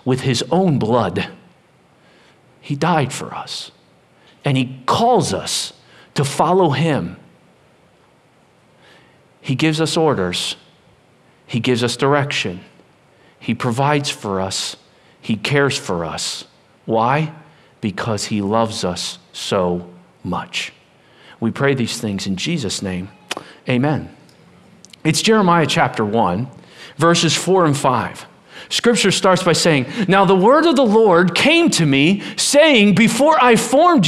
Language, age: English, 50-69